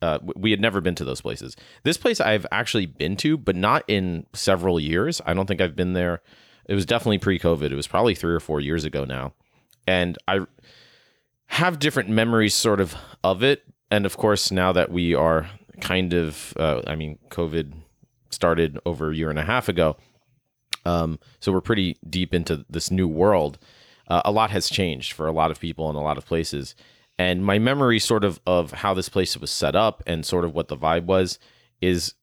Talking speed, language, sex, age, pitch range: 210 wpm, English, male, 30-49, 80-100 Hz